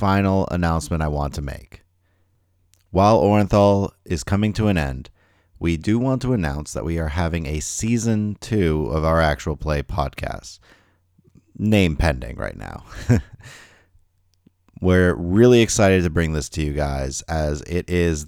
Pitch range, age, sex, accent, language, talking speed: 80-95 Hz, 30-49, male, American, English, 150 wpm